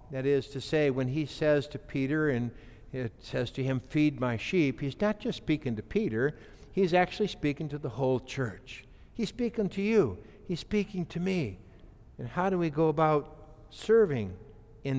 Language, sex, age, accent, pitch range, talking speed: English, male, 60-79, American, 120-175 Hz, 185 wpm